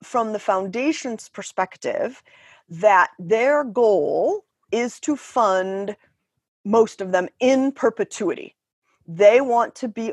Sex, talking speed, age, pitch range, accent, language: female, 115 wpm, 30-49, 195-265 Hz, American, English